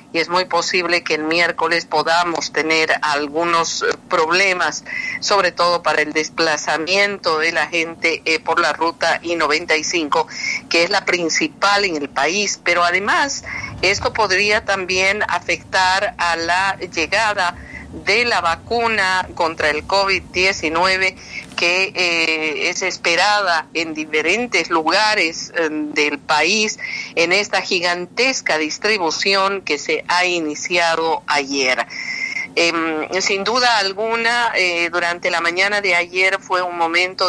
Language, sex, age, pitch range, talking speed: Spanish, female, 50-69, 165-200 Hz, 125 wpm